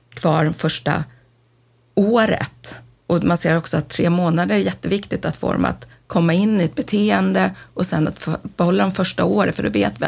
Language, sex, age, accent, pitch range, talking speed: Swedish, female, 30-49, native, 135-180 Hz, 195 wpm